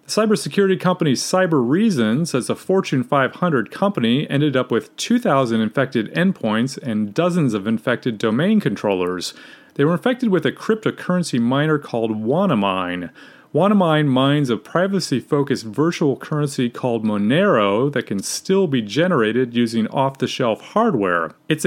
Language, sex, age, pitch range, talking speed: English, male, 30-49, 120-180 Hz, 130 wpm